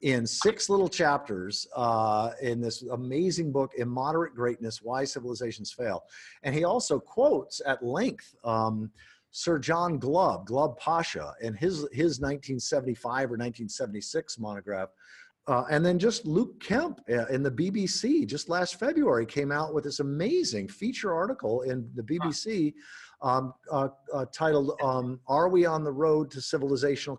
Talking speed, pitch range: 150 wpm, 125-175 Hz